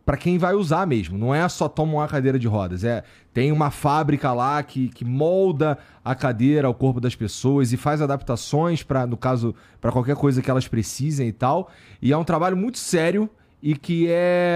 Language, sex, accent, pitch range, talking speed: Portuguese, male, Brazilian, 120-160 Hz, 205 wpm